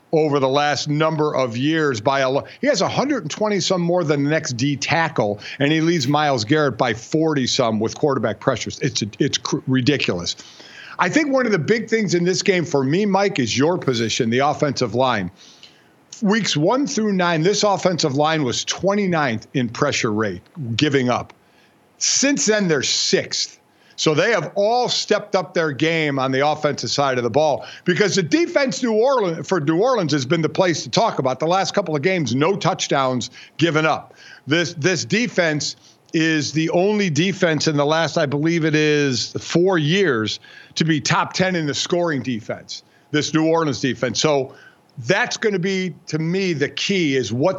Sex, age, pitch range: male, 50-69, 140-185 Hz